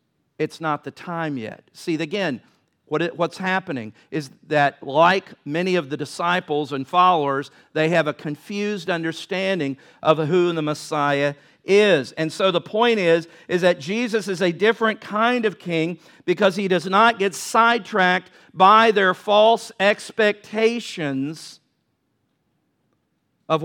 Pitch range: 150-195 Hz